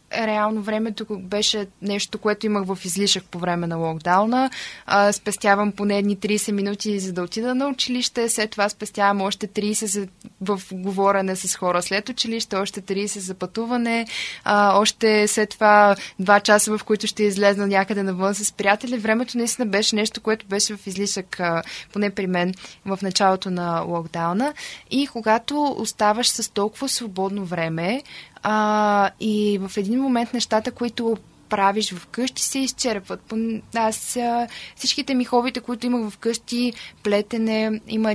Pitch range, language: 195-240 Hz, Bulgarian